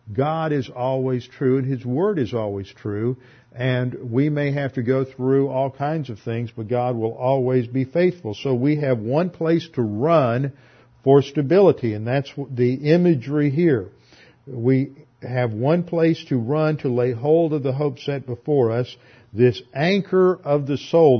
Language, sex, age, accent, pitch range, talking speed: English, male, 50-69, American, 125-150 Hz, 175 wpm